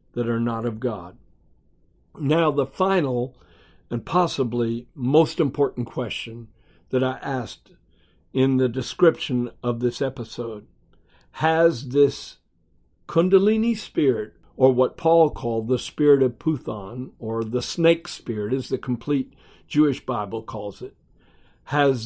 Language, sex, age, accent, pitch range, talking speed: English, male, 60-79, American, 115-150 Hz, 125 wpm